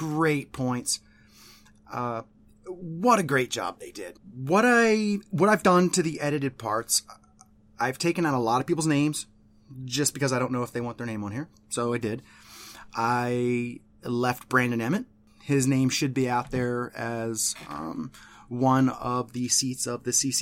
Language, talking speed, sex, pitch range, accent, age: English, 175 wpm, male, 115-145 Hz, American, 30-49